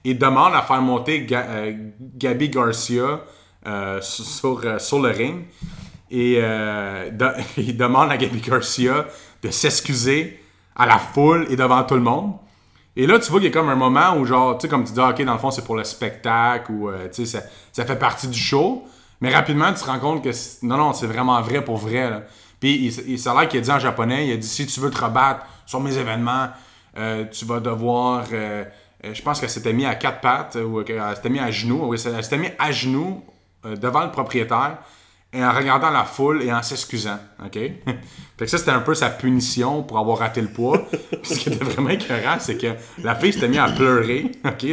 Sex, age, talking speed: male, 30-49, 225 wpm